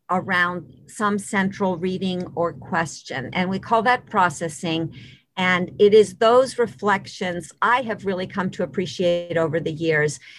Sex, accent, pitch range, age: female, American, 165-205 Hz, 50-69